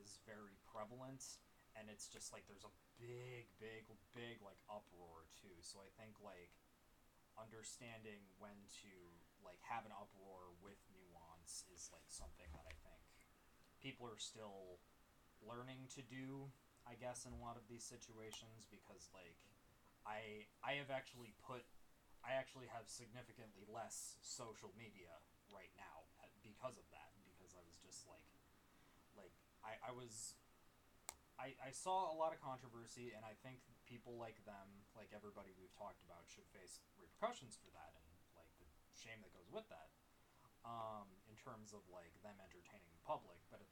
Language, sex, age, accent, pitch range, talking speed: English, male, 20-39, American, 95-120 Hz, 155 wpm